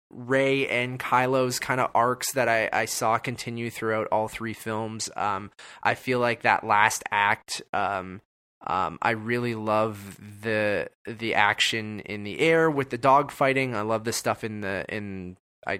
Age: 20-39